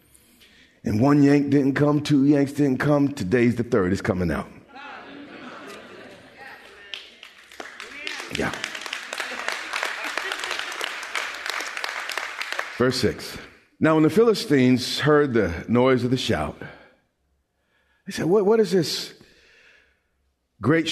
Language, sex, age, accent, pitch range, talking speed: English, male, 50-69, American, 110-160 Hz, 100 wpm